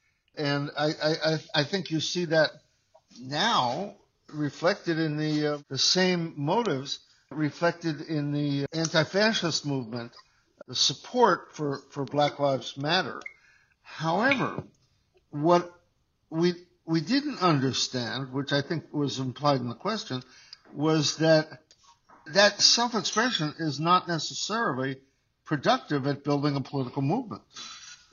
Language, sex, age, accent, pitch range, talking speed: English, male, 60-79, American, 135-170 Hz, 115 wpm